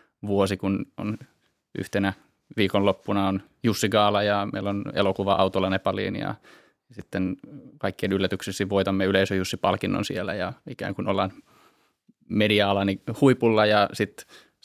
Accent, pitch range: native, 95-105 Hz